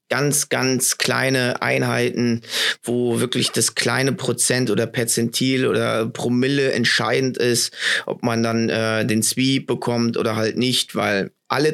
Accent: German